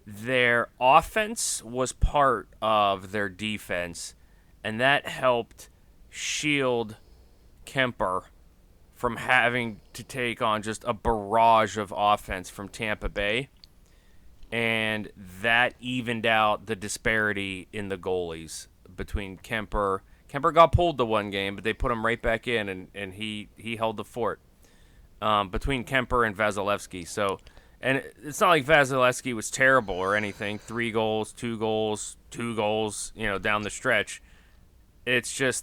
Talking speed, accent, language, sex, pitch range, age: 140 wpm, American, English, male, 95-120 Hz, 30-49